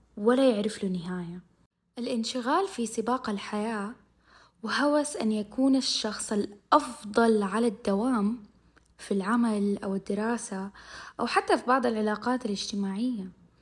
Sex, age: female, 20-39